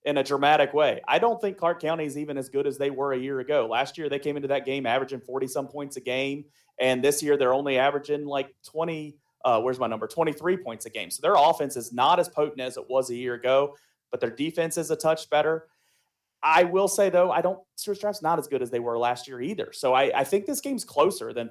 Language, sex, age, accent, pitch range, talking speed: English, male, 30-49, American, 130-155 Hz, 260 wpm